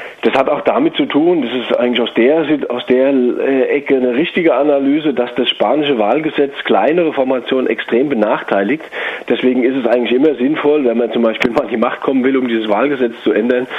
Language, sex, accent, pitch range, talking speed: German, male, German, 120-145 Hz, 200 wpm